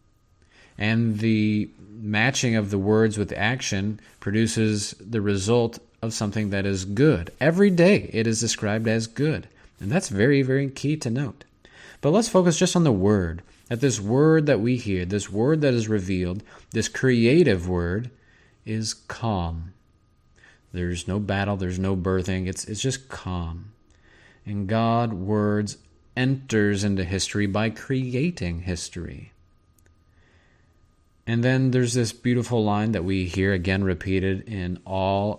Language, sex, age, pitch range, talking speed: English, male, 30-49, 95-120 Hz, 145 wpm